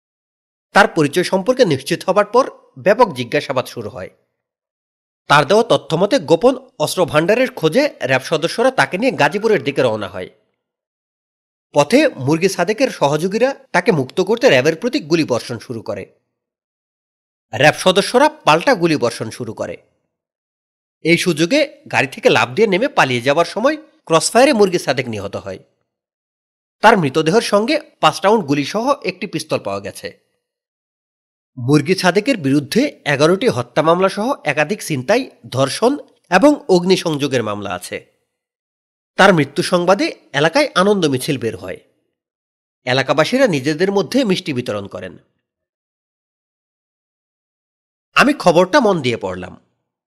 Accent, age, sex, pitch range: native, 30-49, male, 145-230 Hz